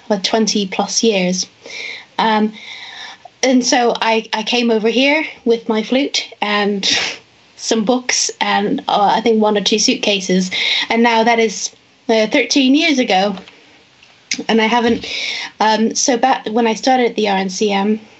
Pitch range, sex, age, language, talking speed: 200-235 Hz, female, 20-39, English, 150 wpm